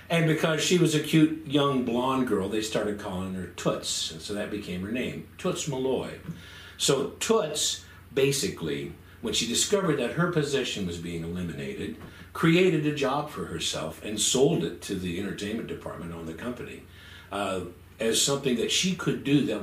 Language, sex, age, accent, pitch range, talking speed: English, male, 60-79, American, 95-150 Hz, 175 wpm